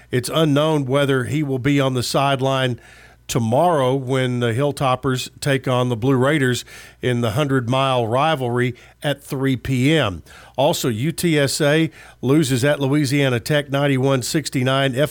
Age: 50-69